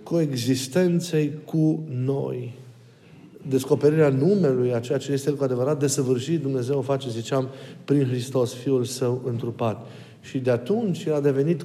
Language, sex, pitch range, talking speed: Romanian, male, 130-160 Hz, 145 wpm